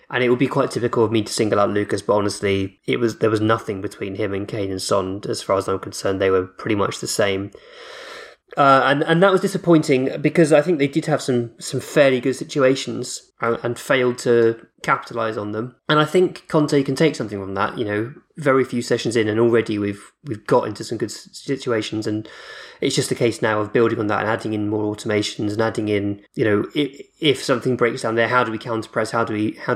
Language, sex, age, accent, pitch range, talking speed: English, male, 20-39, British, 105-130 Hz, 240 wpm